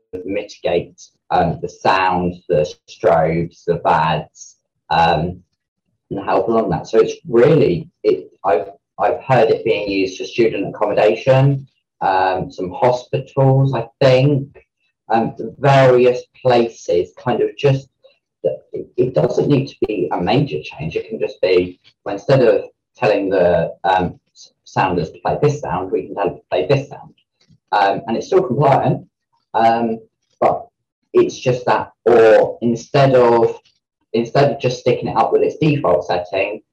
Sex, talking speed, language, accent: male, 150 wpm, English, British